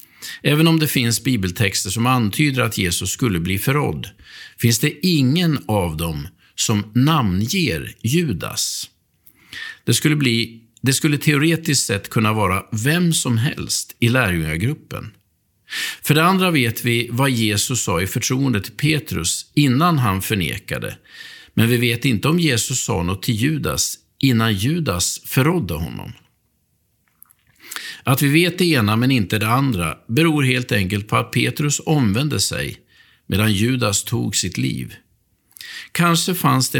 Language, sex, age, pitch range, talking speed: Swedish, male, 50-69, 105-145 Hz, 145 wpm